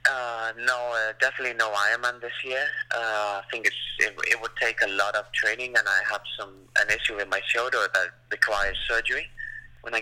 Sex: male